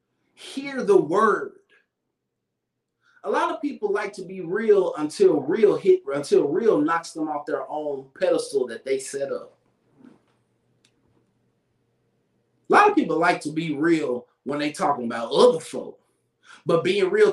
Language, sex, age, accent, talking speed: English, male, 30-49, American, 150 wpm